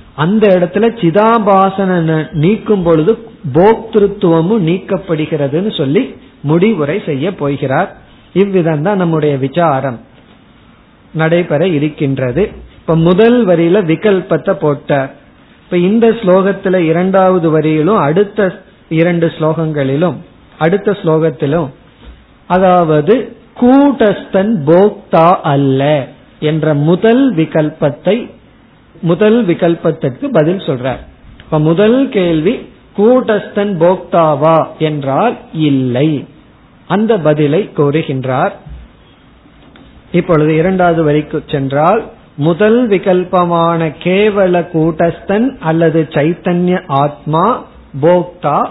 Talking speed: 70 wpm